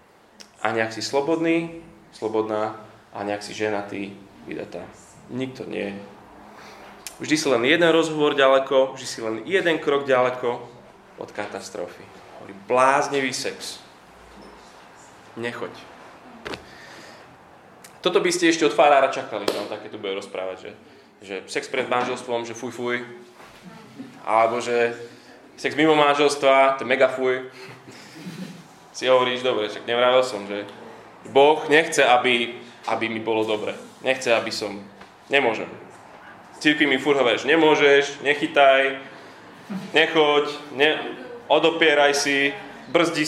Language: Slovak